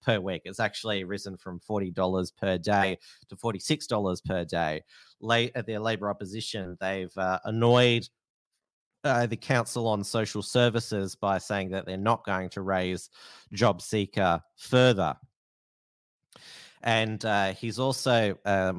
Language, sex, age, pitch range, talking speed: English, male, 30-49, 95-115 Hz, 135 wpm